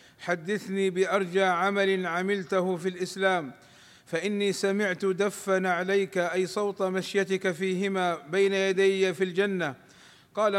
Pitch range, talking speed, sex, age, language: 180-195 Hz, 110 wpm, male, 50-69, Arabic